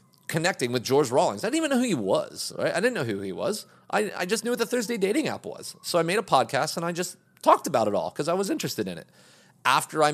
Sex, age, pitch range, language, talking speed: male, 30-49, 150-220 Hz, English, 285 wpm